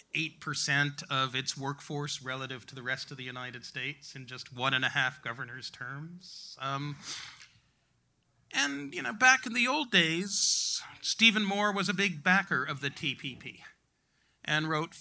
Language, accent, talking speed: English, American, 155 wpm